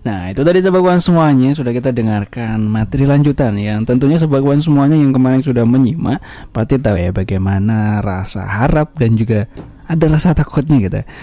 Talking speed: 160 wpm